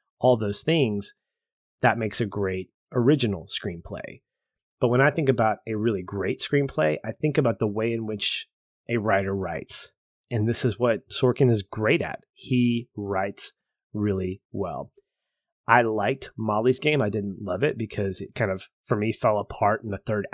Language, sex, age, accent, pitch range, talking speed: English, male, 30-49, American, 100-125 Hz, 175 wpm